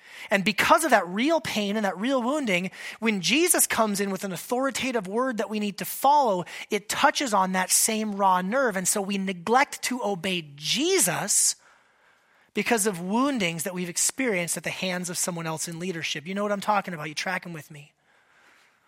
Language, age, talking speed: English, 30-49, 195 wpm